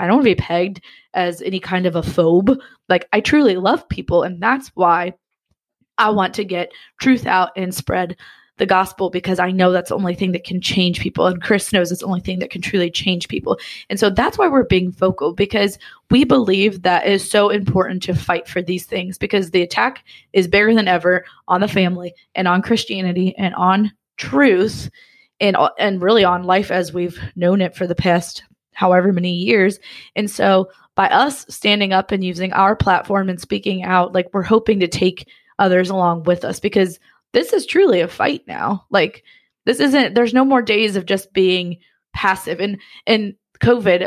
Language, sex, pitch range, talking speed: English, female, 180-205 Hz, 200 wpm